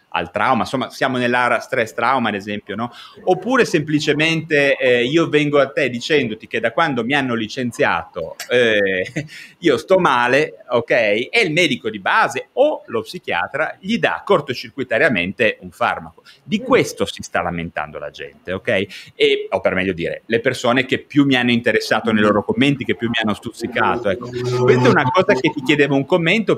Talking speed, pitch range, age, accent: 180 wpm, 115-180 Hz, 30-49, native